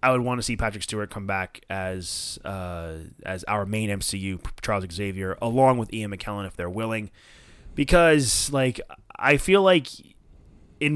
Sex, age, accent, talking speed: male, 20-39, American, 165 wpm